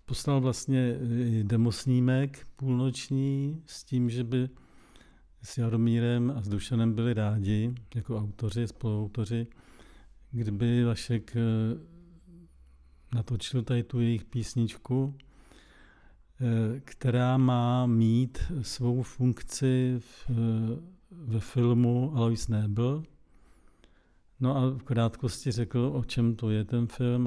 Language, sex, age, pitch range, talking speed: Czech, male, 50-69, 115-125 Hz, 100 wpm